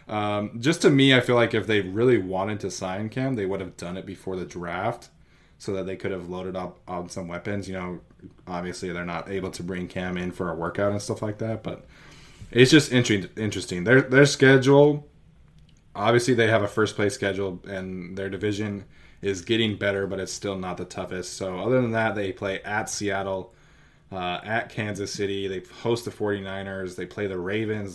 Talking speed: 205 wpm